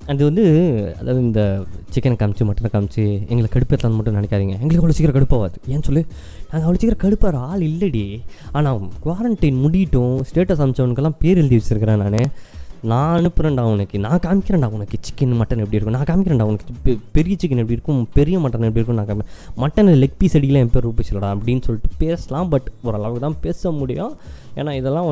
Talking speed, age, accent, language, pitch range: 175 wpm, 20-39, native, Tamil, 115-150 Hz